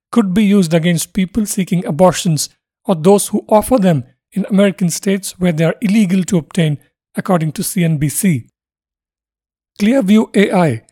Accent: Indian